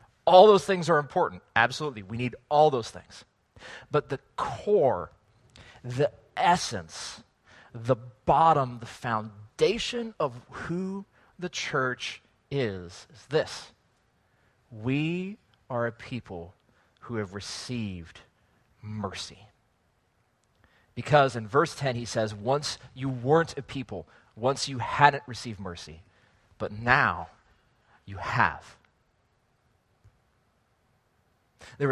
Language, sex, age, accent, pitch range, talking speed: English, male, 30-49, American, 105-140 Hz, 105 wpm